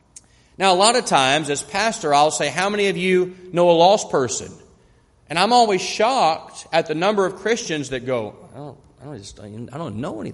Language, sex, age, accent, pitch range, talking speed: English, male, 40-59, American, 170-235 Hz, 190 wpm